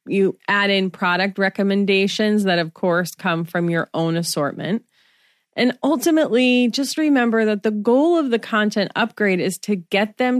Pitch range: 175-235 Hz